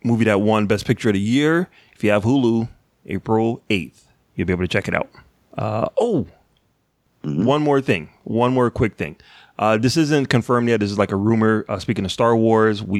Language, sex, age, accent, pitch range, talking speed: English, male, 30-49, American, 100-120 Hz, 210 wpm